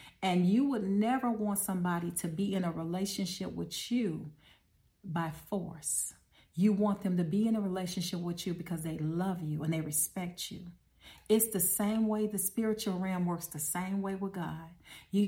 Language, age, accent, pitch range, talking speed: English, 40-59, American, 175-215 Hz, 180 wpm